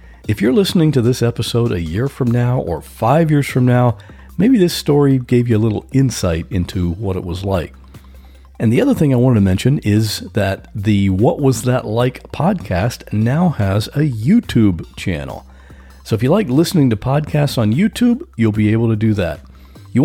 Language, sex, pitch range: English, male, 100-145 Hz